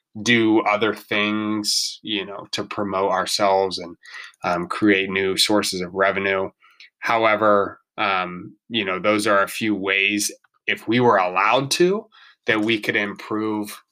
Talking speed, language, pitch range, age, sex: 140 wpm, English, 95-115 Hz, 20-39, male